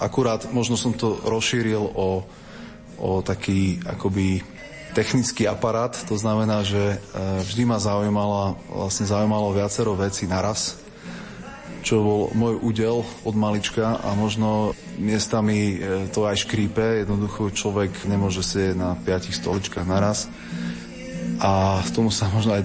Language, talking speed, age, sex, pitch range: Slovak, 130 wpm, 30-49, male, 100-115 Hz